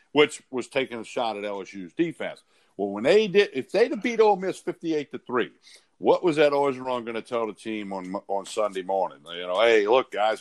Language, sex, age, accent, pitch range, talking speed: English, male, 60-79, American, 100-125 Hz, 215 wpm